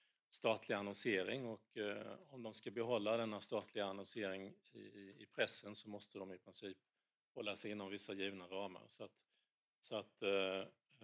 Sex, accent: male, Norwegian